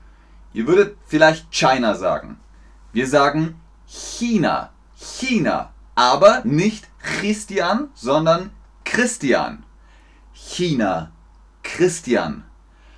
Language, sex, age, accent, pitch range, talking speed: German, male, 30-49, German, 115-185 Hz, 75 wpm